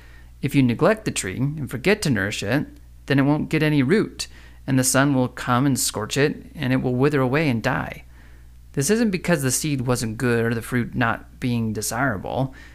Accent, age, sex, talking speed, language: American, 30-49, male, 205 wpm, English